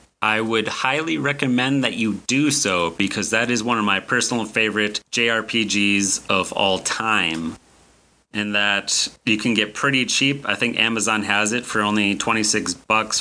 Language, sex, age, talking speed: English, male, 30-49, 165 wpm